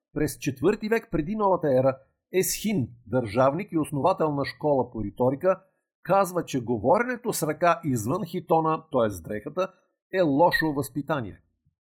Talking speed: 130 wpm